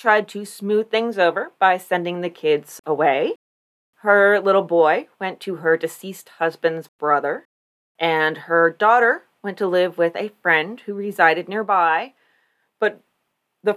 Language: English